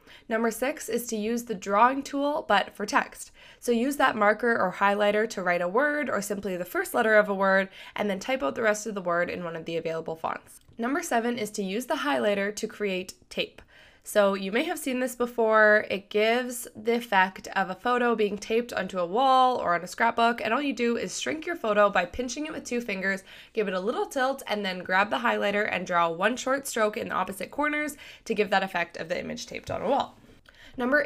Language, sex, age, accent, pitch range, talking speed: English, female, 20-39, American, 195-245 Hz, 235 wpm